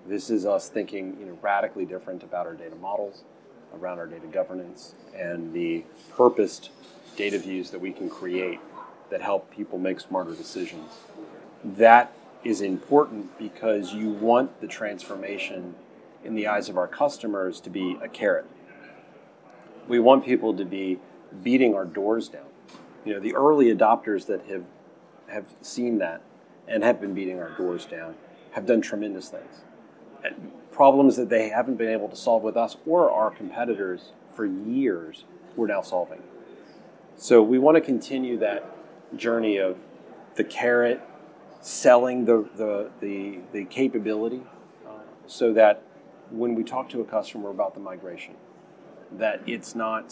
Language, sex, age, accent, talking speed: English, male, 30-49, American, 150 wpm